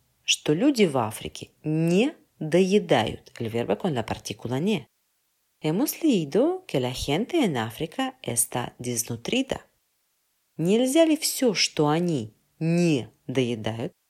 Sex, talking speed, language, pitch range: female, 80 wpm, Spanish, 125-190 Hz